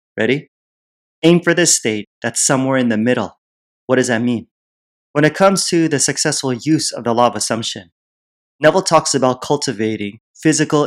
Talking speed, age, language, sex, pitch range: 170 wpm, 30-49, English, male, 115-145 Hz